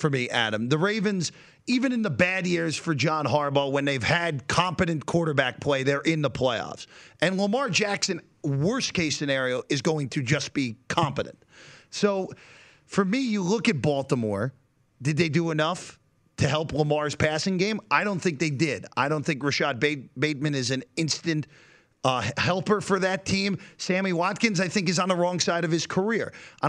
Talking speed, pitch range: 185 wpm, 140-185 Hz